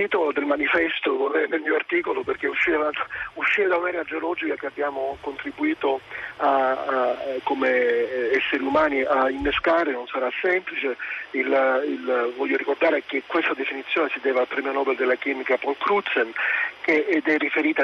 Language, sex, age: Italian, male, 40-59